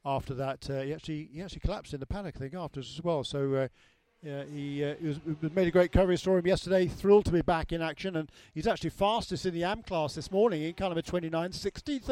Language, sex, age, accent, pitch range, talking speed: English, male, 50-69, British, 155-190 Hz, 255 wpm